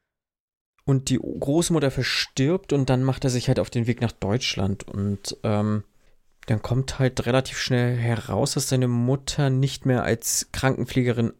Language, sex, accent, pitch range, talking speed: German, male, German, 115-135 Hz, 160 wpm